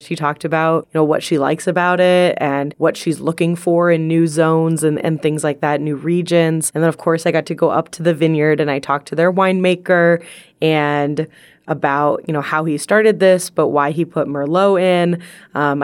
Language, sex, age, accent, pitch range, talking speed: English, female, 20-39, American, 145-170 Hz, 220 wpm